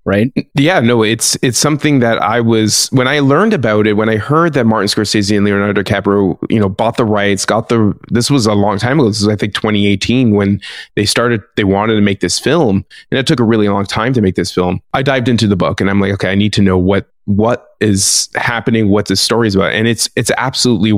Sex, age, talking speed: male, 20-39, 250 wpm